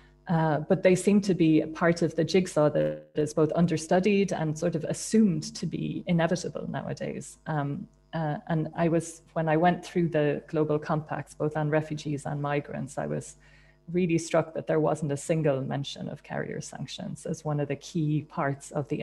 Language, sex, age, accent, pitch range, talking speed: English, female, 30-49, Irish, 150-165 Hz, 190 wpm